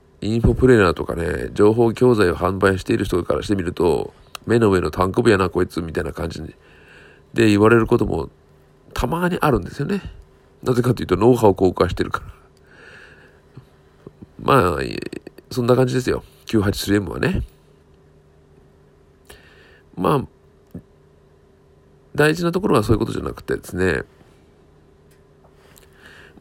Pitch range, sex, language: 80-125 Hz, male, Japanese